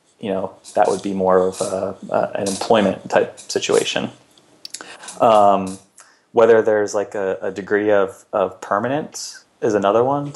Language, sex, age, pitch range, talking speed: English, male, 20-39, 95-120 Hz, 150 wpm